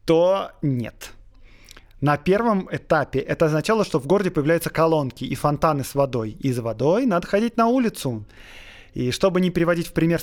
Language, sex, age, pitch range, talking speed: Russian, male, 20-39, 135-175 Hz, 165 wpm